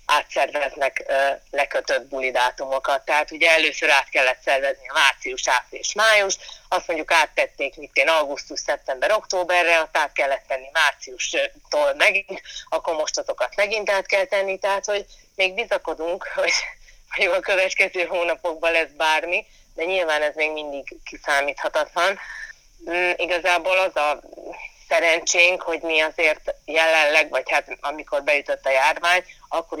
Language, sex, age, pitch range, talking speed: Hungarian, female, 30-49, 140-180 Hz, 130 wpm